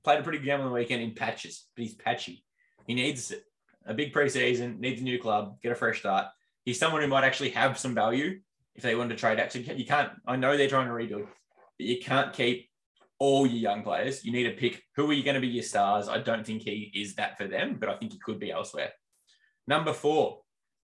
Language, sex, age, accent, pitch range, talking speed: English, male, 20-39, Australian, 110-135 Hz, 250 wpm